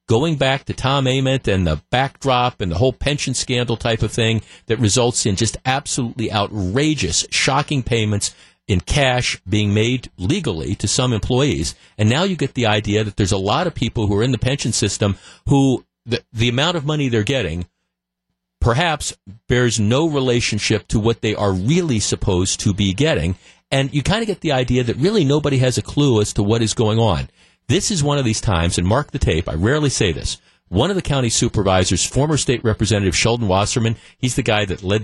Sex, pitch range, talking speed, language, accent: male, 100-130 Hz, 205 wpm, English, American